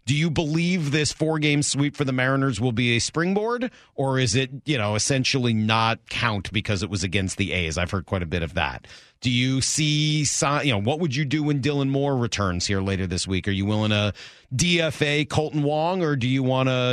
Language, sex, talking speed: English, male, 225 wpm